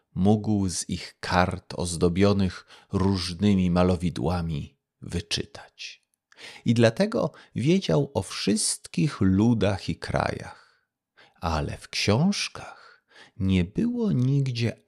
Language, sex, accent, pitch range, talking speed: Polish, male, native, 90-135 Hz, 90 wpm